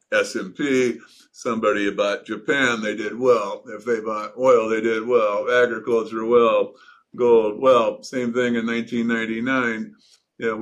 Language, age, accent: English, 50-69, American